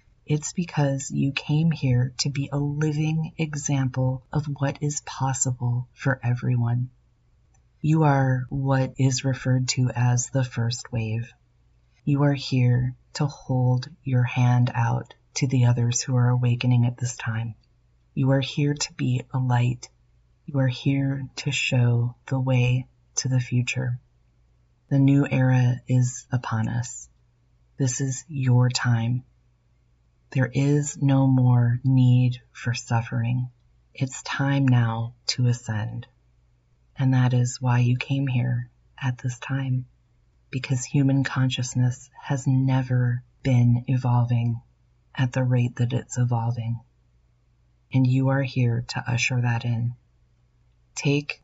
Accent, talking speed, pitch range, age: American, 135 wpm, 120-135 Hz, 30-49